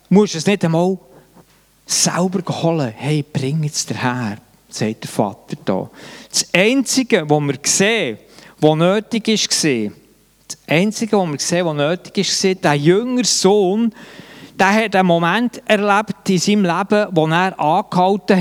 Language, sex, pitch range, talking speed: German, male, 155-205 Hz, 145 wpm